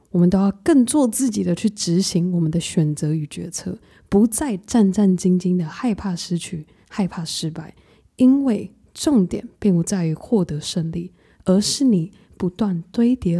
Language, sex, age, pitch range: Chinese, female, 20-39, 175-220 Hz